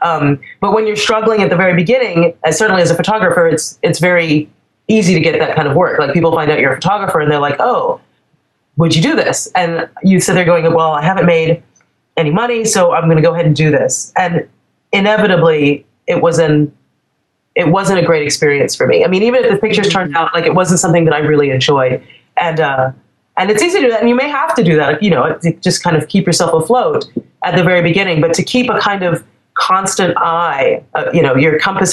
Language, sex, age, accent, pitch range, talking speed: English, female, 30-49, American, 150-185 Hz, 240 wpm